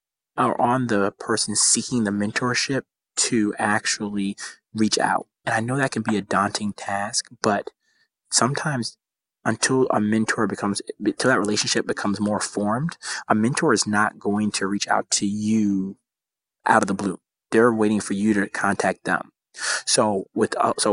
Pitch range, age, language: 105-120 Hz, 20-39, English